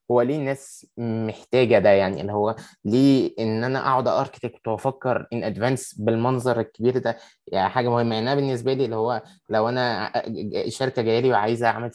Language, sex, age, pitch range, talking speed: Arabic, male, 20-39, 110-130 Hz, 170 wpm